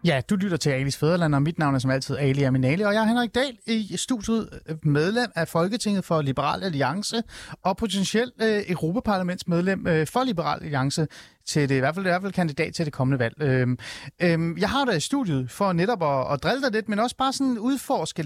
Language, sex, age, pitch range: Danish, male, 30-49, 145-205 Hz